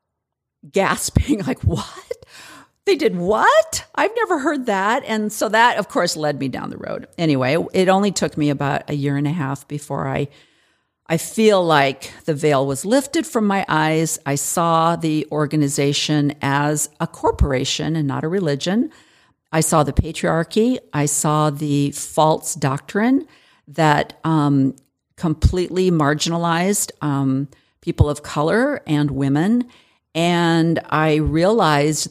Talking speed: 140 wpm